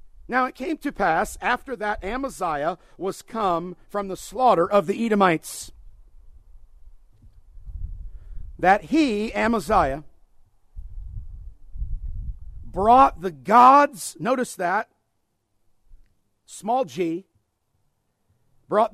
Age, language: 50-69, English